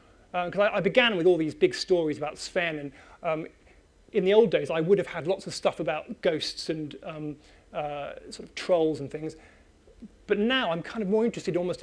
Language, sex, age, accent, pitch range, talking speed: English, male, 30-49, British, 165-205 Hz, 220 wpm